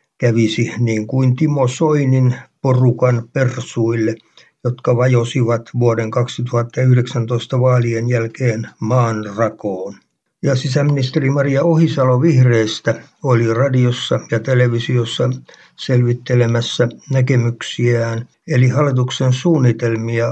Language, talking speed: Finnish, 75 wpm